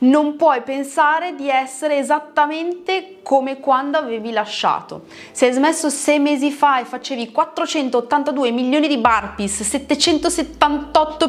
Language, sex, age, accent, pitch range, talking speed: Italian, female, 30-49, native, 235-305 Hz, 120 wpm